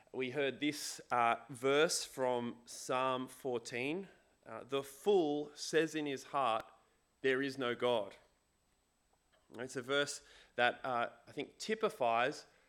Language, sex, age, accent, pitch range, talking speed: English, male, 30-49, Australian, 130-160 Hz, 130 wpm